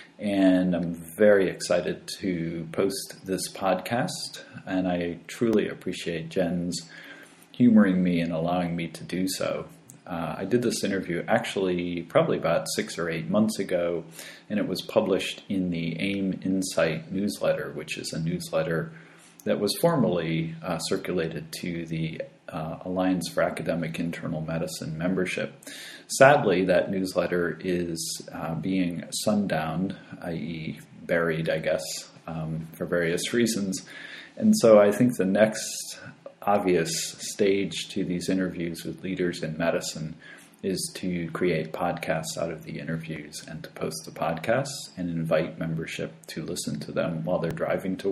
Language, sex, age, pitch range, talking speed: English, male, 40-59, 85-95 Hz, 145 wpm